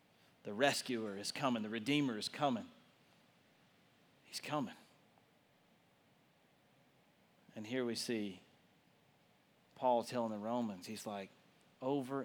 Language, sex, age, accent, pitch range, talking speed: English, male, 40-59, American, 125-155 Hz, 105 wpm